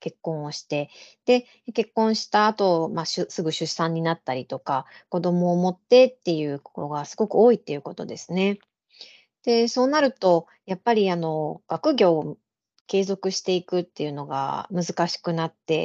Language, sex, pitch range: Japanese, female, 160-210 Hz